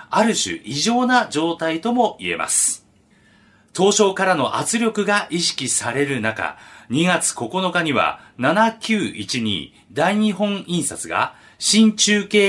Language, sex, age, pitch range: Japanese, male, 40-59, 140-220 Hz